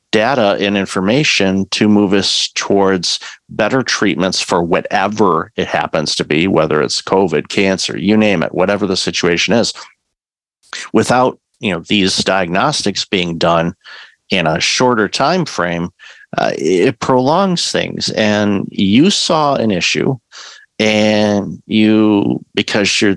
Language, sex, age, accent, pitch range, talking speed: English, male, 50-69, American, 90-105 Hz, 130 wpm